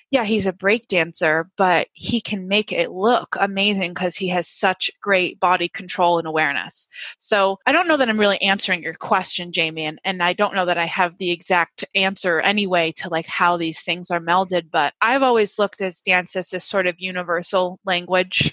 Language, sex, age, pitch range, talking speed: English, female, 20-39, 175-205 Hz, 205 wpm